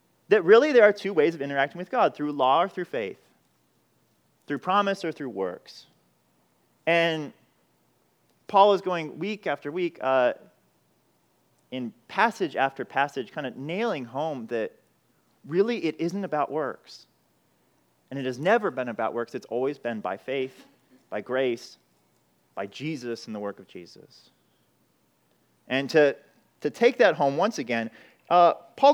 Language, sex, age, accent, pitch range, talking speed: English, male, 30-49, American, 130-205 Hz, 150 wpm